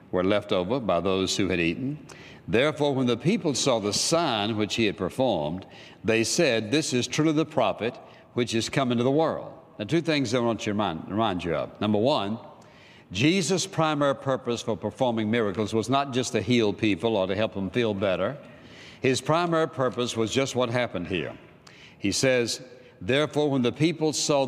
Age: 60-79